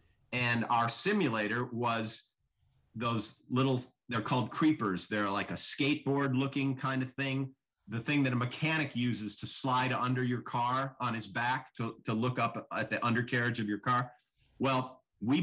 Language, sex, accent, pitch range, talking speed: English, male, American, 110-135 Hz, 165 wpm